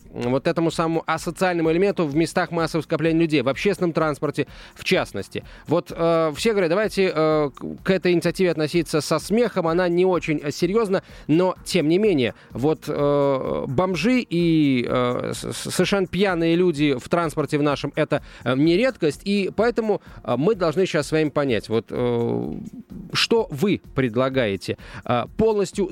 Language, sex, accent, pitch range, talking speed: Russian, male, native, 145-190 Hz, 150 wpm